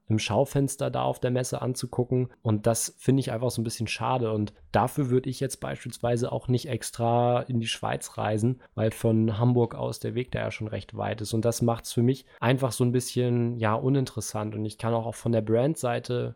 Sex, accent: male, German